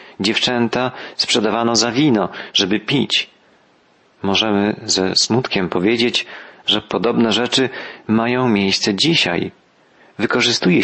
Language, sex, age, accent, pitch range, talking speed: Polish, male, 40-59, native, 105-120 Hz, 95 wpm